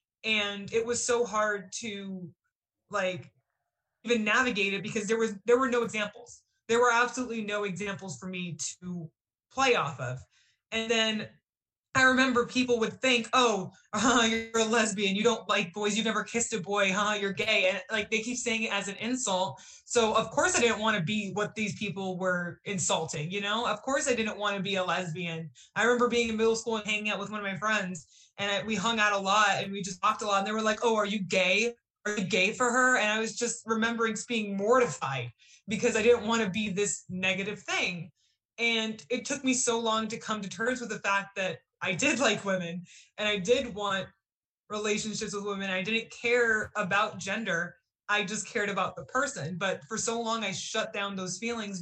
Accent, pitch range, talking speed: American, 190-230 Hz, 215 wpm